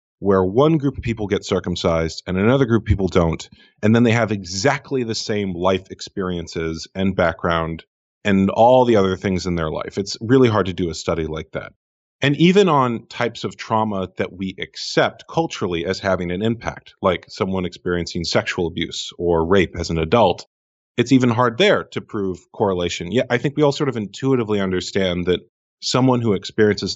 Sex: male